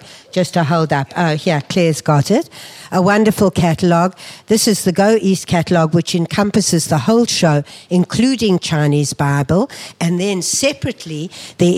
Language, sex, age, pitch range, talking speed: English, female, 60-79, 160-195 Hz, 155 wpm